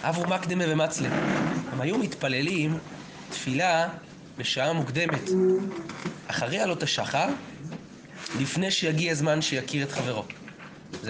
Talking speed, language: 105 wpm, Hebrew